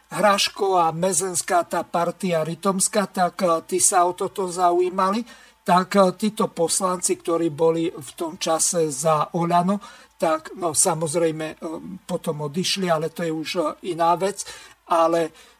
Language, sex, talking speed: Slovak, male, 130 wpm